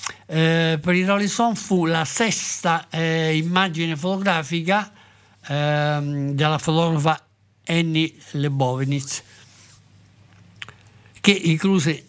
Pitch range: 140-175 Hz